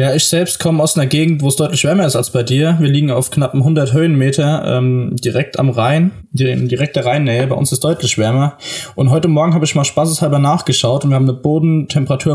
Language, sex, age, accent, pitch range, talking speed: German, male, 20-39, German, 130-155 Hz, 230 wpm